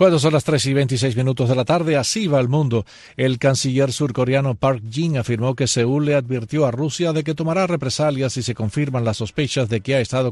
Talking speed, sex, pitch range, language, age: 225 wpm, male, 120-145 Hz, Spanish, 50-69